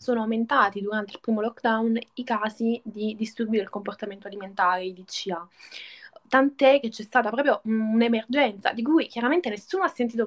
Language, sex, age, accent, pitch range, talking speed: Italian, female, 10-29, native, 215-260 Hz, 160 wpm